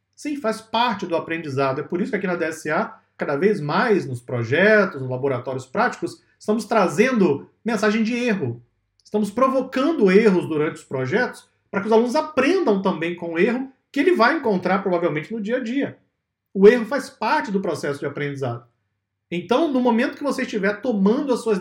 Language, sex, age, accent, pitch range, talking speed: Portuguese, male, 40-59, Brazilian, 155-240 Hz, 185 wpm